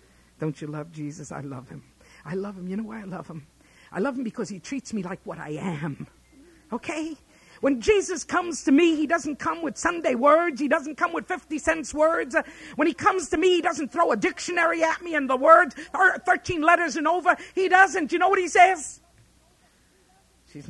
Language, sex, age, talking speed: English, female, 50-69, 215 wpm